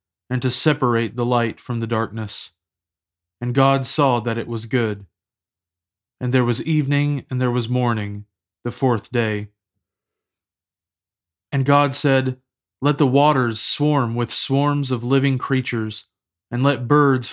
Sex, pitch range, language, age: male, 105-135 Hz, English, 30-49